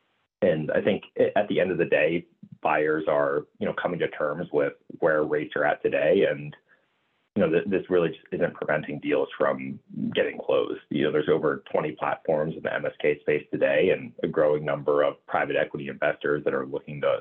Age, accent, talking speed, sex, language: 30-49, American, 200 wpm, male, English